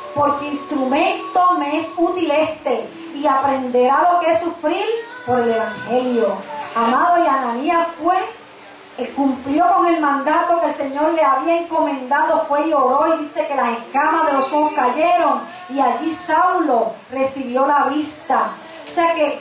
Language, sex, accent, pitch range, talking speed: Spanish, female, American, 265-330 Hz, 155 wpm